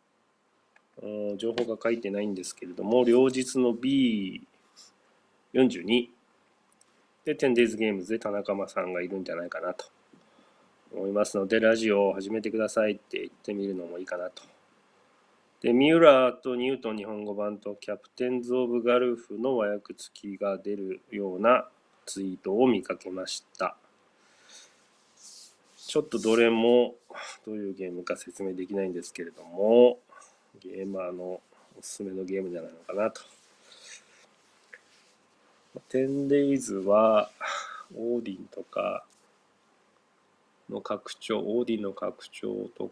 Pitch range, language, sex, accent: 100-120 Hz, Japanese, male, native